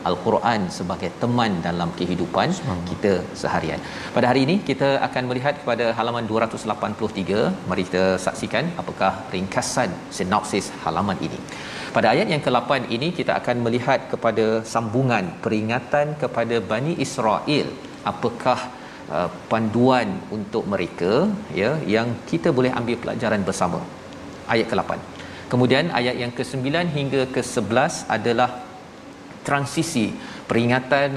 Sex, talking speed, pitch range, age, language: male, 115 wpm, 110-130 Hz, 40-59, Malayalam